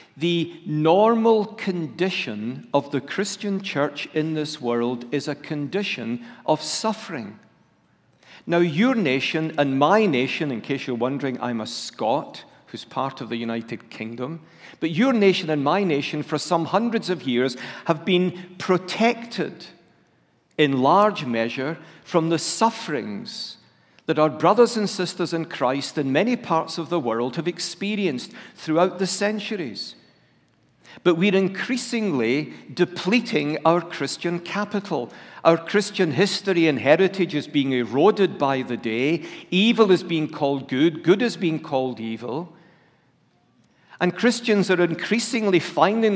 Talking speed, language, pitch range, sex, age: 135 wpm, English, 140-195 Hz, male, 60-79